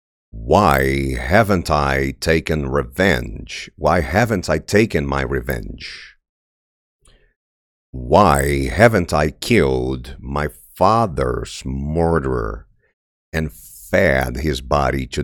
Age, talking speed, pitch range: 50-69, 90 wpm, 65-80 Hz